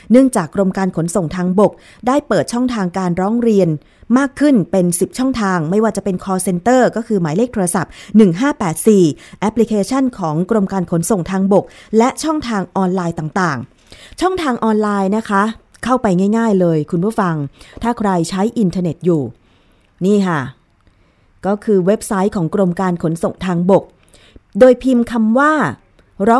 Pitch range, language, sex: 175-230 Hz, Thai, female